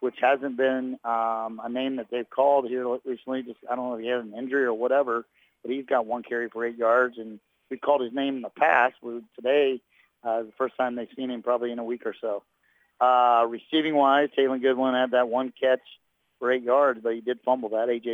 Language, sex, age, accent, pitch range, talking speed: English, male, 50-69, American, 115-130 Hz, 230 wpm